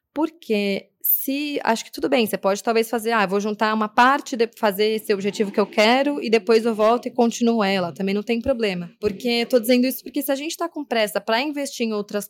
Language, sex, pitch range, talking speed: Portuguese, female, 210-255 Hz, 245 wpm